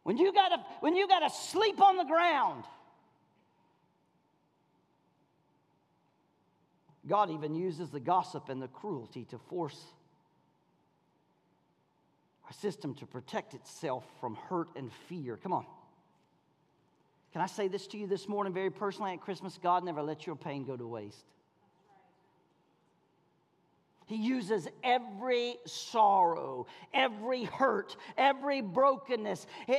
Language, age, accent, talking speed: English, 50-69, American, 125 wpm